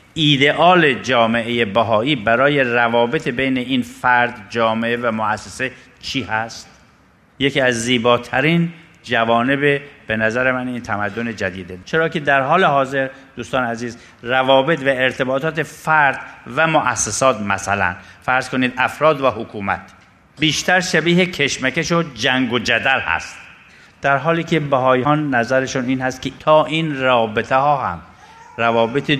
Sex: male